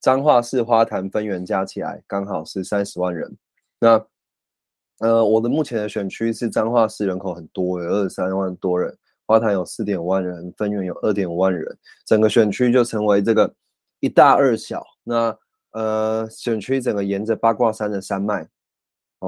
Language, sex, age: Chinese, male, 20-39